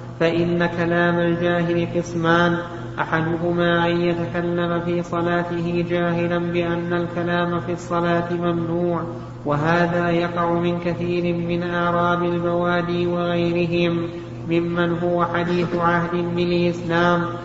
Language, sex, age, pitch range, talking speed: Arabic, male, 30-49, 170-175 Hz, 95 wpm